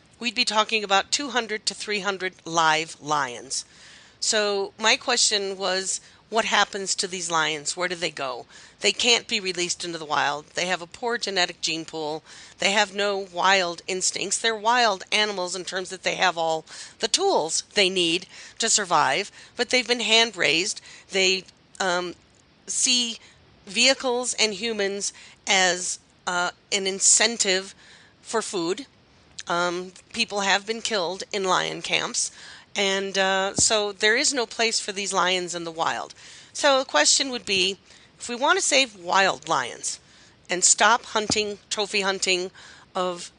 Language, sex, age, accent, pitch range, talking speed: English, female, 40-59, American, 175-220 Hz, 155 wpm